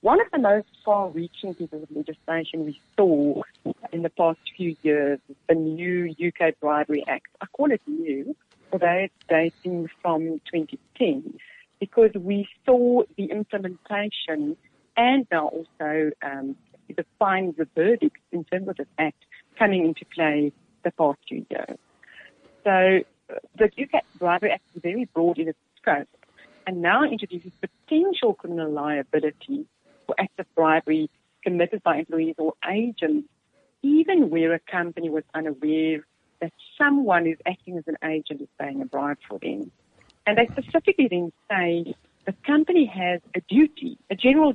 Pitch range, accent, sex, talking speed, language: 160-235 Hz, British, female, 150 wpm, English